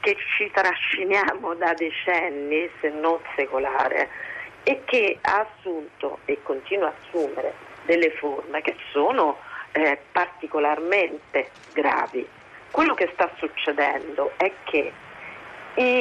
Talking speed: 110 wpm